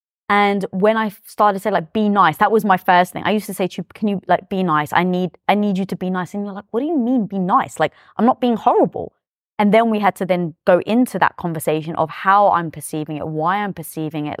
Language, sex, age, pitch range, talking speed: English, female, 20-39, 165-210 Hz, 275 wpm